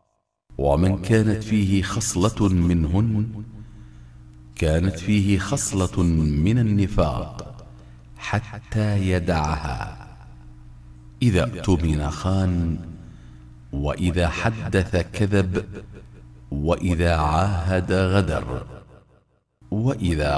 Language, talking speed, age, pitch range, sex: Arabic, 65 wpm, 50-69, 75-95 Hz, male